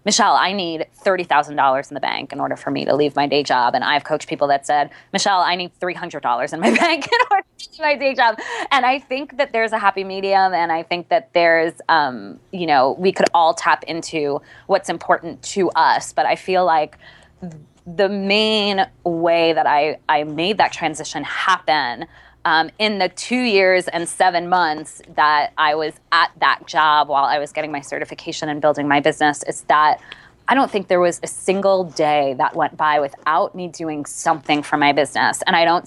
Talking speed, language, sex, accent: 205 wpm, English, female, American